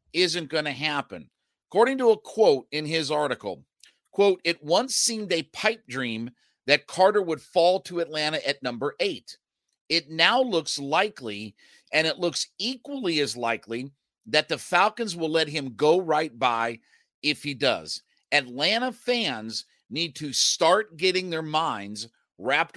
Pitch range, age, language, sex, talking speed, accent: 140-185 Hz, 50-69, English, male, 155 wpm, American